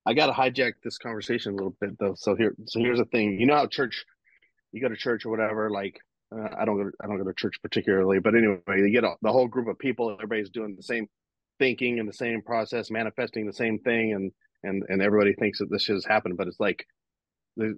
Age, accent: 30-49, American